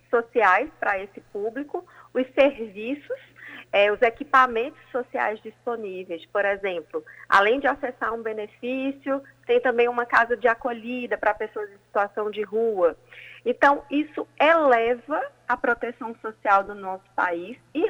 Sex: female